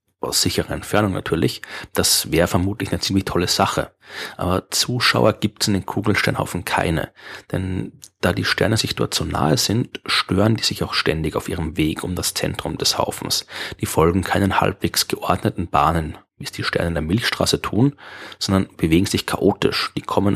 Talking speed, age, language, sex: 180 wpm, 30-49, German, male